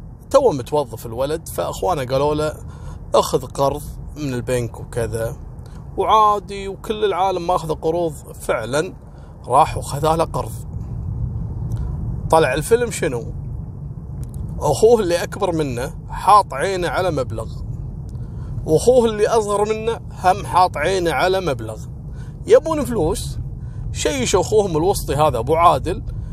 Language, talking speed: Arabic, 115 wpm